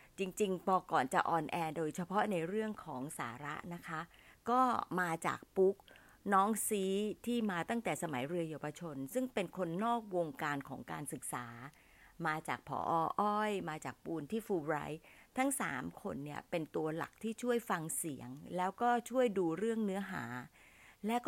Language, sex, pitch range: Thai, female, 160-205 Hz